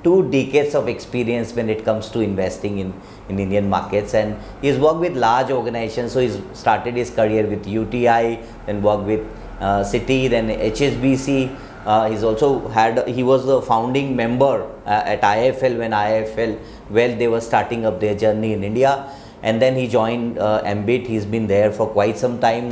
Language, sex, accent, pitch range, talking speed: English, male, Indian, 110-130 Hz, 180 wpm